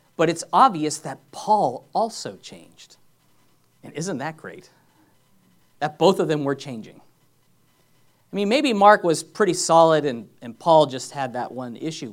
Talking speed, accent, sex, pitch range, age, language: 160 wpm, American, male, 155-230 Hz, 40-59, English